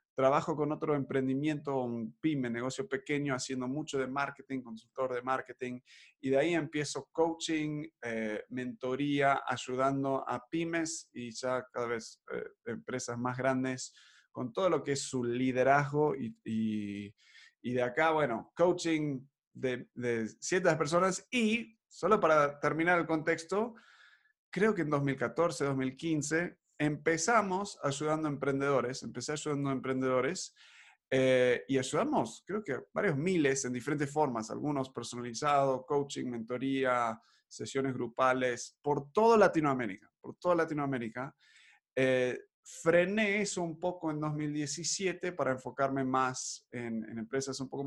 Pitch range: 125-155 Hz